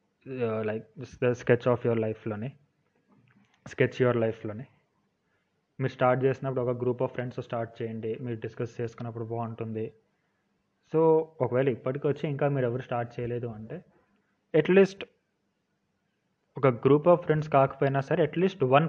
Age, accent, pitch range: 20-39, native, 120-145 Hz